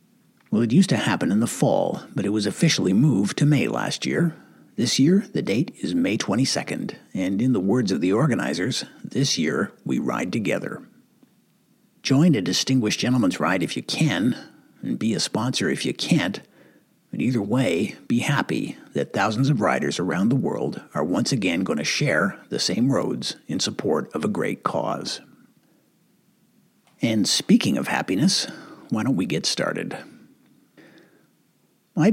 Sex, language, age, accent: male, English, 60-79, American